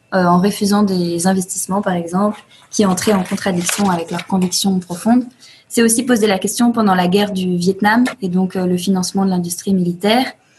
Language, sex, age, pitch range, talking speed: French, female, 20-39, 180-210 Hz, 185 wpm